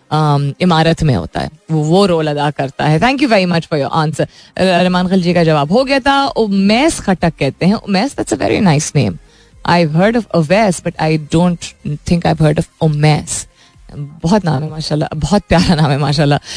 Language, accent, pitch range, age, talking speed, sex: Hindi, native, 155-205 Hz, 20-39, 110 wpm, female